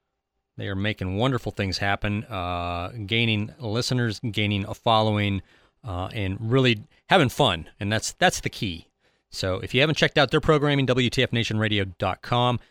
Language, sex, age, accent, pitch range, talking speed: English, male, 30-49, American, 95-130 Hz, 145 wpm